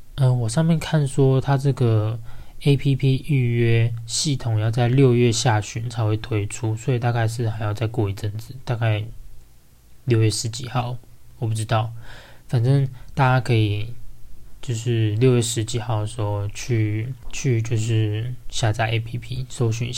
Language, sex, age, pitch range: Chinese, male, 20-39, 110-130 Hz